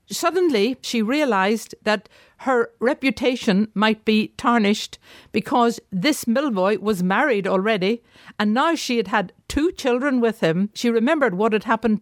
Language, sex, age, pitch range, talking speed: English, female, 60-79, 205-250 Hz, 145 wpm